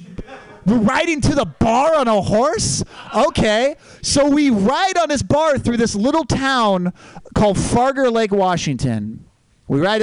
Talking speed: 150 wpm